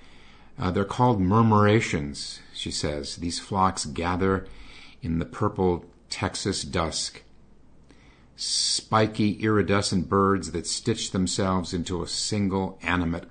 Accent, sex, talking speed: American, male, 110 wpm